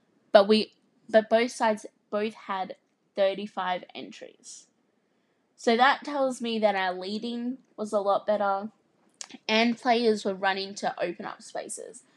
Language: English